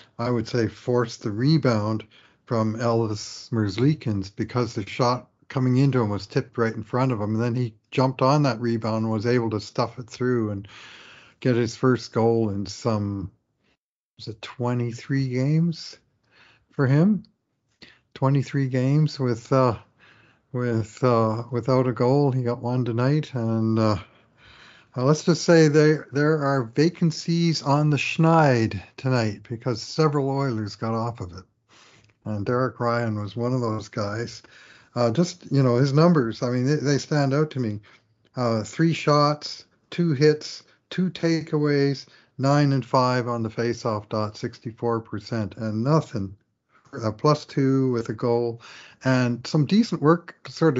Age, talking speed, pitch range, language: 50-69, 155 wpm, 115-140 Hz, English